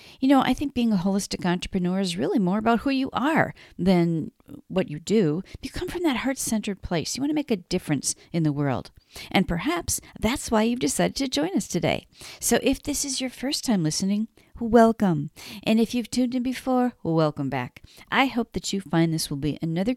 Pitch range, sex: 155-225 Hz, female